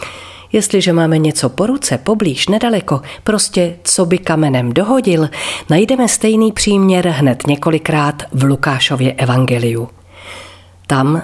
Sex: female